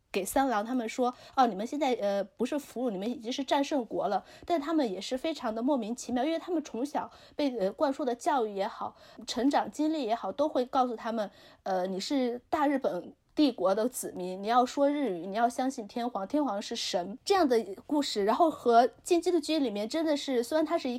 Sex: female